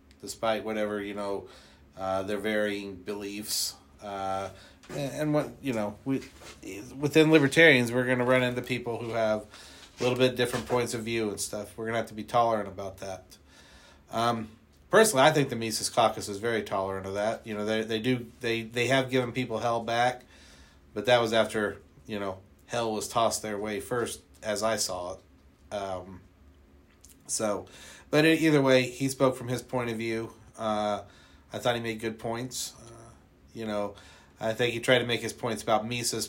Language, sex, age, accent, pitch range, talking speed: English, male, 40-59, American, 95-120 Hz, 190 wpm